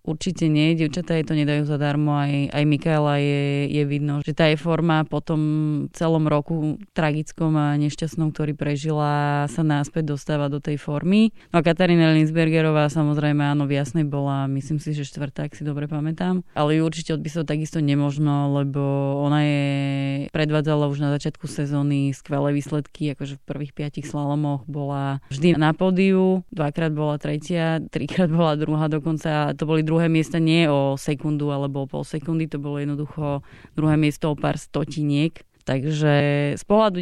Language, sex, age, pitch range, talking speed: Slovak, female, 20-39, 145-155 Hz, 170 wpm